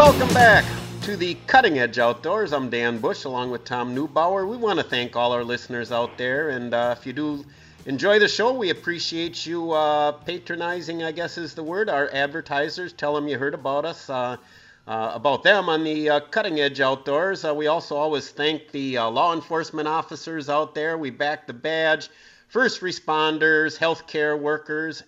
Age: 50-69